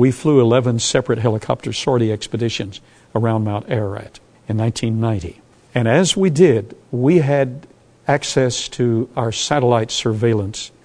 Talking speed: 125 wpm